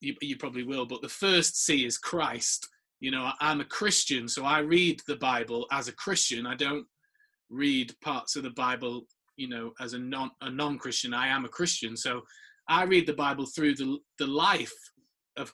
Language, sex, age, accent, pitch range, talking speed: English, male, 20-39, British, 135-165 Hz, 205 wpm